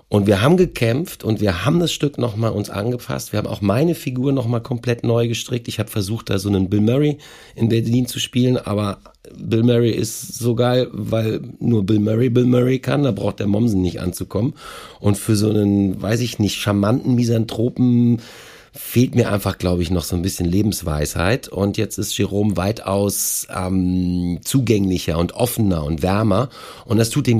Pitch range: 95-120 Hz